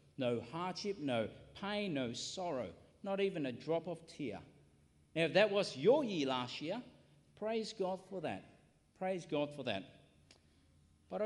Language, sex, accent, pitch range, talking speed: English, male, Australian, 130-195 Hz, 155 wpm